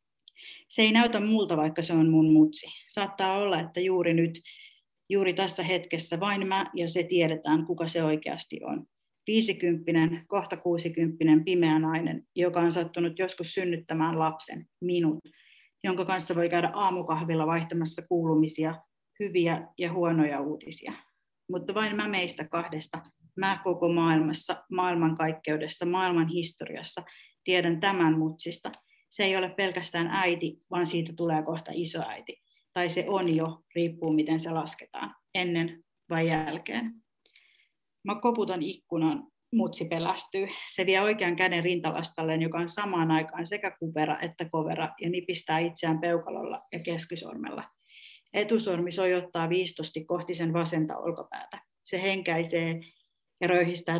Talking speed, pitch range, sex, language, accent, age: 130 wpm, 165-185 Hz, female, Finnish, native, 30-49